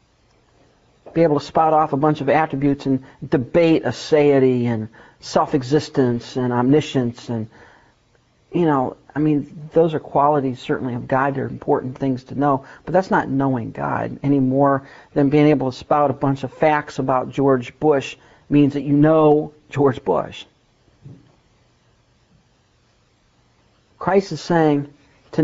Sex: male